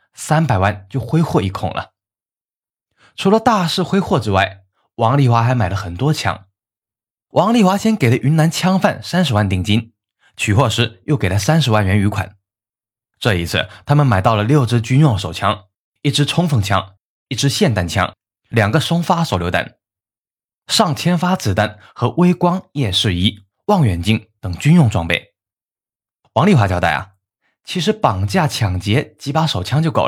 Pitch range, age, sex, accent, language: 100-155 Hz, 20-39, male, native, Chinese